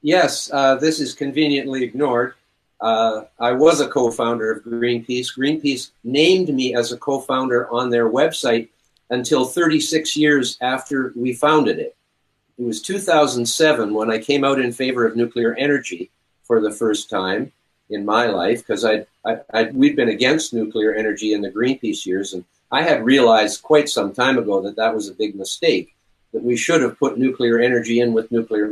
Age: 50-69